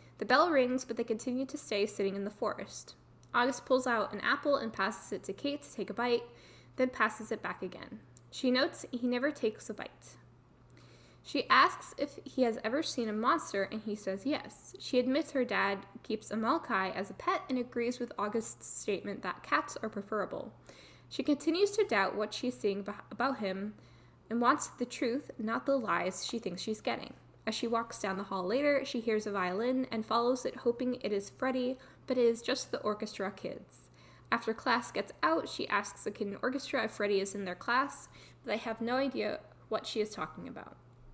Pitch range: 205-260 Hz